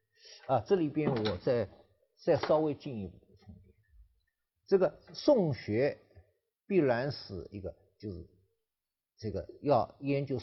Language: Chinese